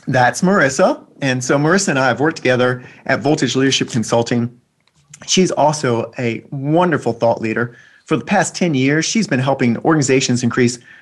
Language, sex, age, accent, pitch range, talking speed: English, male, 40-59, American, 120-155 Hz, 165 wpm